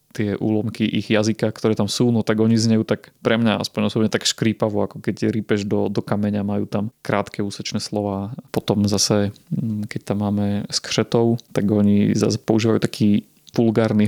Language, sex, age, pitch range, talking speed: Slovak, male, 30-49, 100-110 Hz, 175 wpm